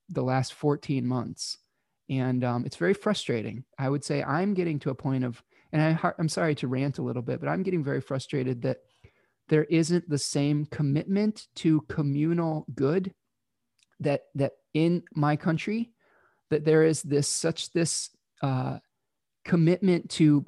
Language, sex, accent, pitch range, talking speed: English, male, American, 140-170 Hz, 160 wpm